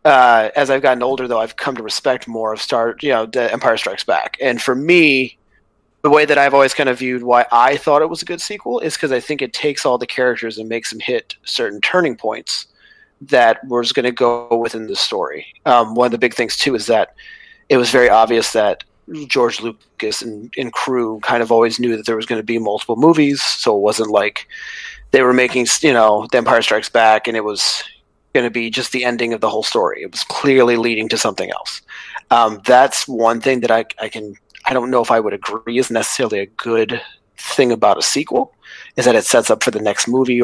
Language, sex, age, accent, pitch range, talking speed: English, male, 30-49, American, 110-135 Hz, 235 wpm